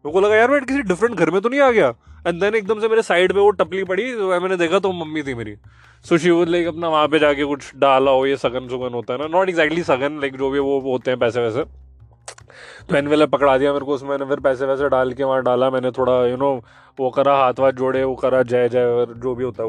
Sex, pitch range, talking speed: male, 140-215 Hz, 220 wpm